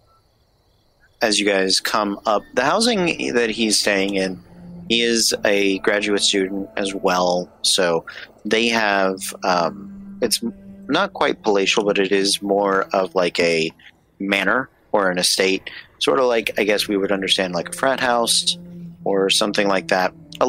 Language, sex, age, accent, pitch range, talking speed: English, male, 30-49, American, 95-115 Hz, 160 wpm